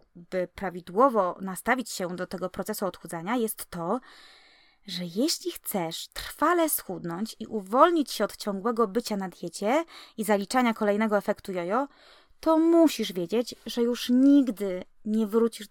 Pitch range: 195-255 Hz